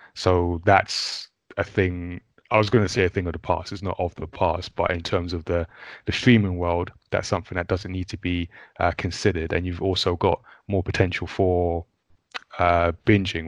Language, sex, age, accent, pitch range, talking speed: English, male, 20-39, British, 85-100 Hz, 200 wpm